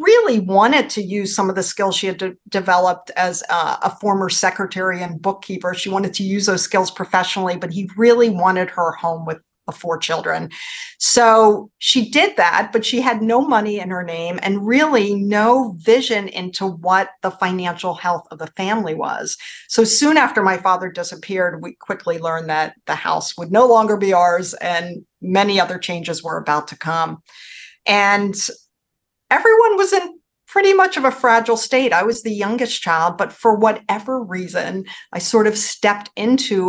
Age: 50-69